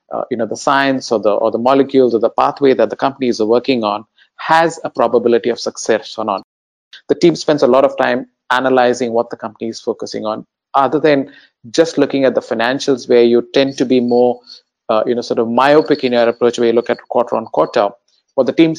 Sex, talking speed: male, 235 wpm